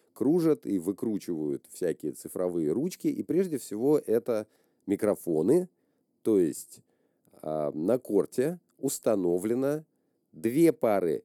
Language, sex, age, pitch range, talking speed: Russian, male, 40-59, 100-155 Hz, 100 wpm